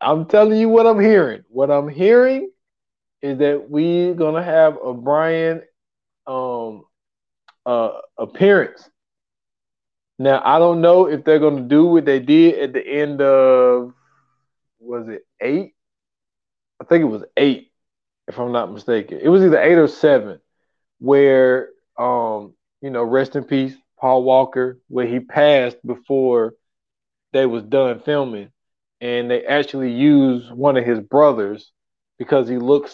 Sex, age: male, 20-39